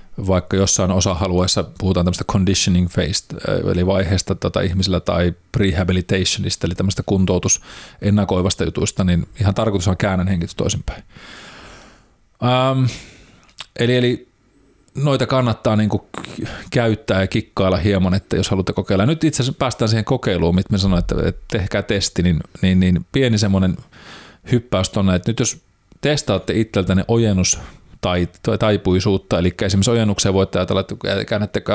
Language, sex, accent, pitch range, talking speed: Finnish, male, native, 95-110 Hz, 135 wpm